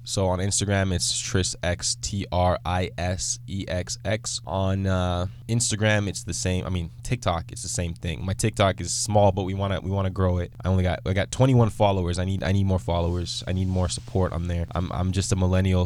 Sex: male